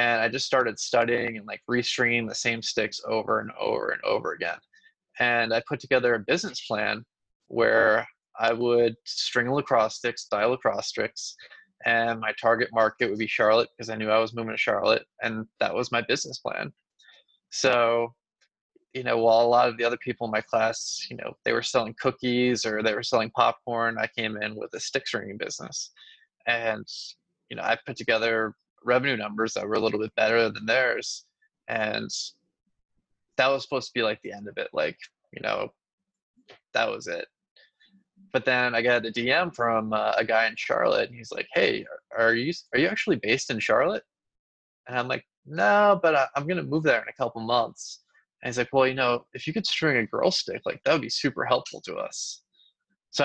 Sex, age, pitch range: male, 20-39, 115-145 Hz